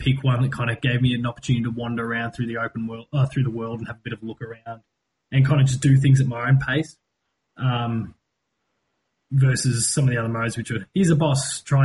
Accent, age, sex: Australian, 20-39, male